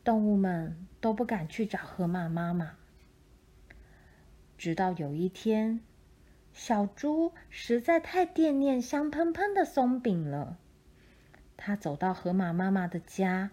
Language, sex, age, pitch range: Chinese, female, 30-49, 180-265 Hz